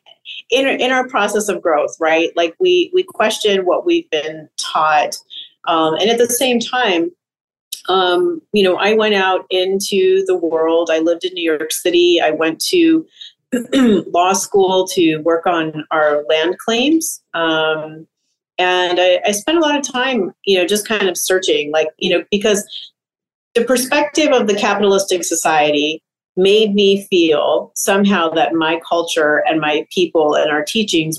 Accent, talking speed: American, 160 wpm